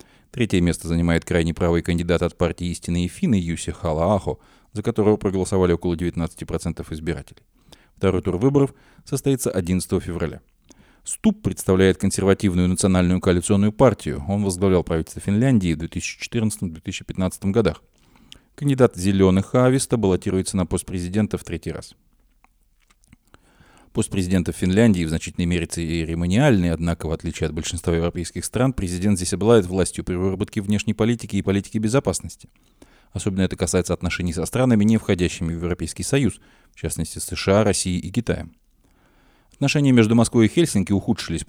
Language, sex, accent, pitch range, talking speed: Russian, male, native, 85-105 Hz, 135 wpm